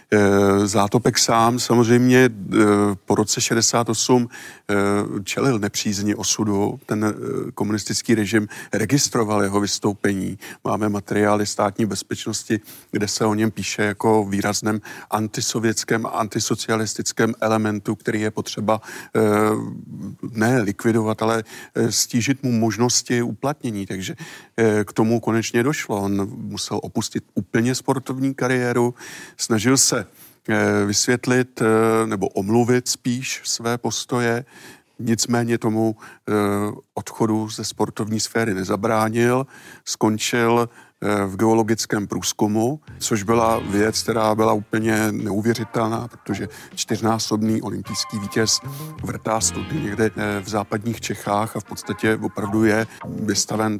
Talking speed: 100 wpm